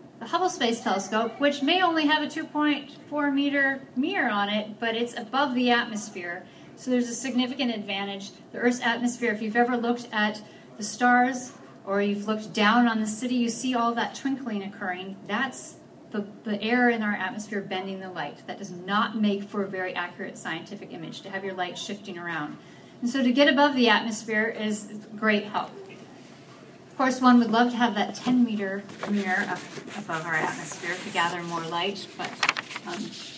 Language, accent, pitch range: English, American, 205-250 Hz